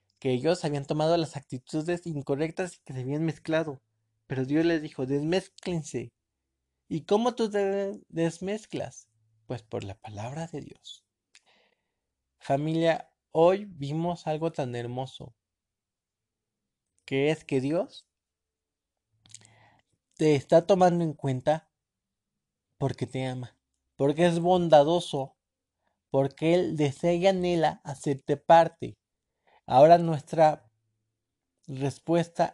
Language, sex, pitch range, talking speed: Spanish, male, 115-165 Hz, 110 wpm